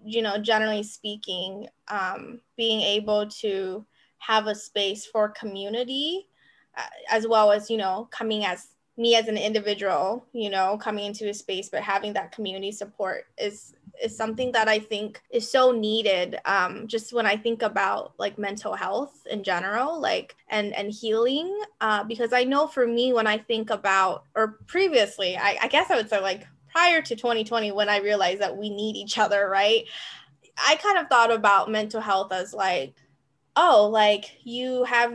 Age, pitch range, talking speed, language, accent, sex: 20-39, 195-230 Hz, 180 wpm, English, American, female